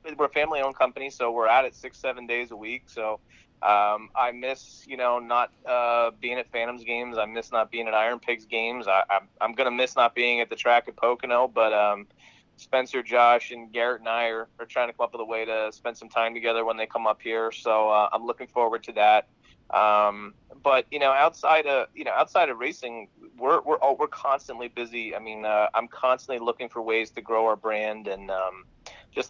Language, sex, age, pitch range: English, male, 30-49, 105-120 Hz